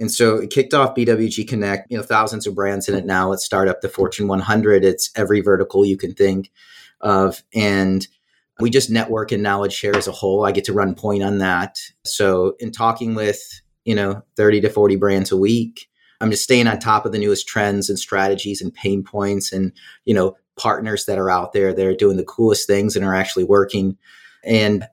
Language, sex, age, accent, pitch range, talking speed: English, male, 30-49, American, 95-110 Hz, 220 wpm